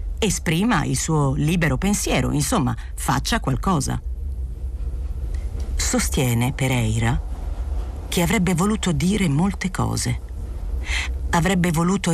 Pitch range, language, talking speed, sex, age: 125-180 Hz, Italian, 90 wpm, female, 40-59